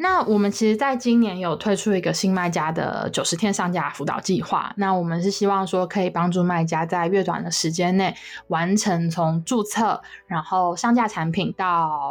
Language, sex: Chinese, female